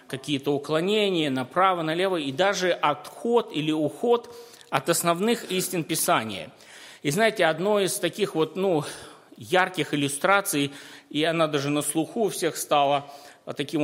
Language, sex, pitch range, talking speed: Russian, male, 155-200 Hz, 135 wpm